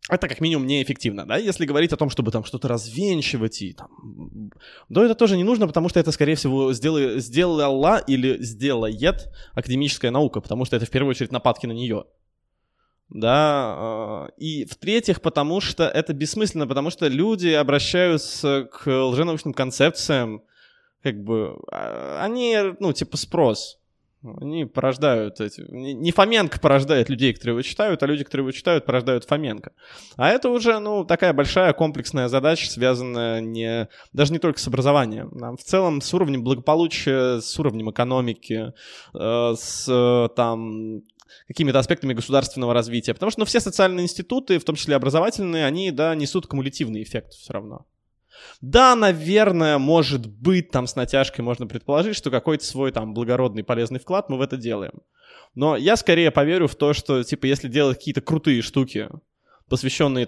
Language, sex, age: Russian, male, 20-39